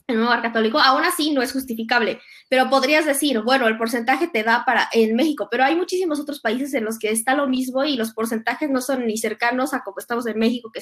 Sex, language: female, Spanish